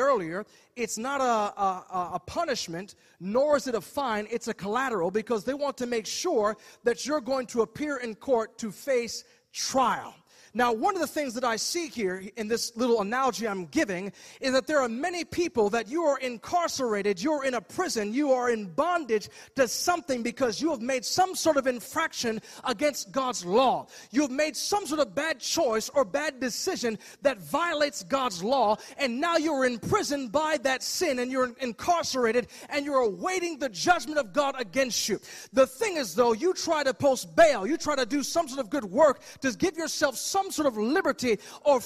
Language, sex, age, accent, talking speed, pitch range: English, male, 30-49, American, 200 wpm, 240-310 Hz